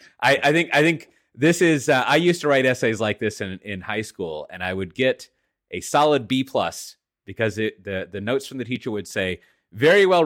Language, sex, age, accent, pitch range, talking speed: English, male, 30-49, American, 95-135 Hz, 230 wpm